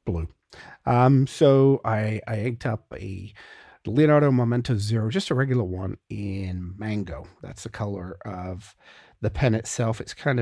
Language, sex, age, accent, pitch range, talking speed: English, male, 50-69, American, 100-125 Hz, 150 wpm